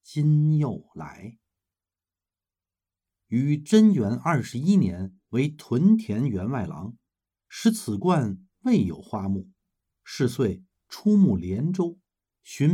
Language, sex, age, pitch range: Chinese, male, 50-69, 100-160 Hz